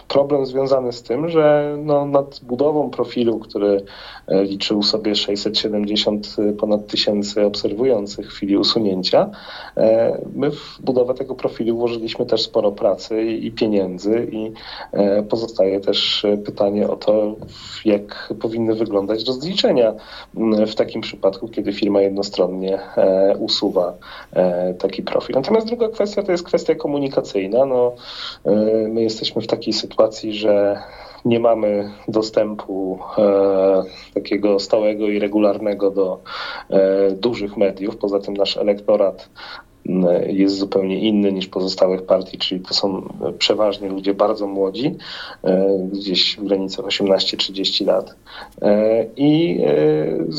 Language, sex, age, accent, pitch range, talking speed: Polish, male, 40-59, native, 100-120 Hz, 115 wpm